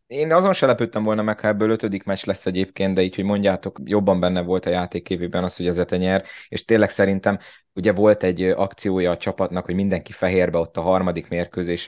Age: 20-39